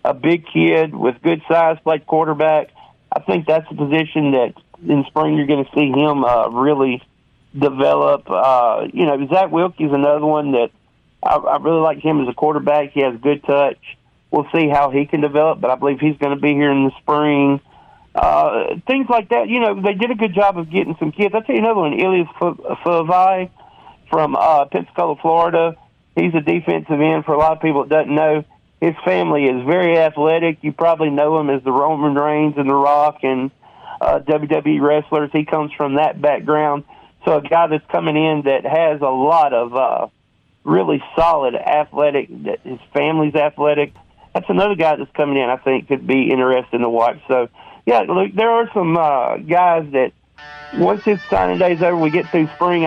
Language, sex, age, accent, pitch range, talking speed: English, male, 40-59, American, 140-165 Hz, 200 wpm